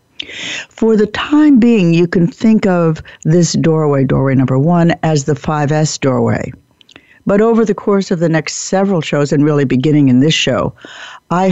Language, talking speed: English, 170 wpm